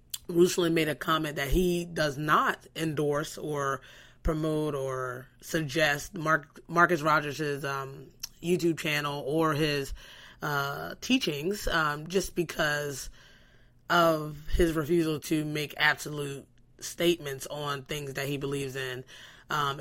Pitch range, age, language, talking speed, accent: 140-165 Hz, 20-39, English, 120 wpm, American